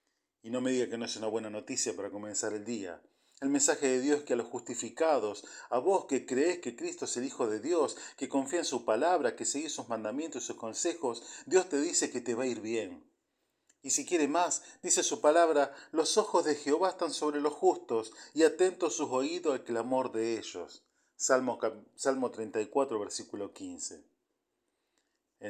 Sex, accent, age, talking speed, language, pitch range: male, Argentinian, 40-59, 195 wpm, Spanish, 115-155 Hz